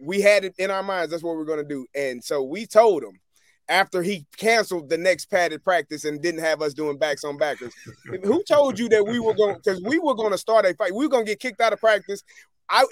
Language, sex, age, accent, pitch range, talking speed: English, male, 30-49, American, 145-200 Hz, 275 wpm